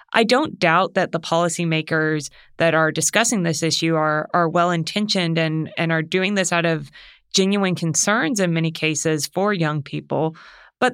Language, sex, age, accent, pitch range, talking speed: English, female, 20-39, American, 165-195 Hz, 165 wpm